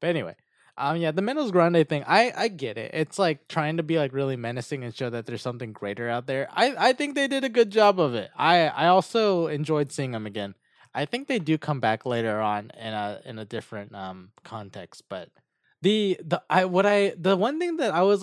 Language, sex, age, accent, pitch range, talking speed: English, male, 20-39, American, 120-170 Hz, 235 wpm